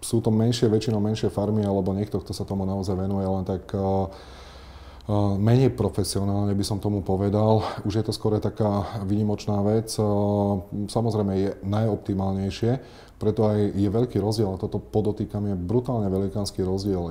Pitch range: 90-105 Hz